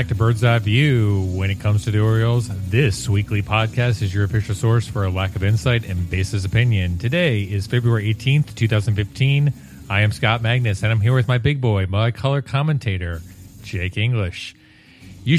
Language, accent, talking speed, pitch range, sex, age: English, American, 185 wpm, 100-130 Hz, male, 30-49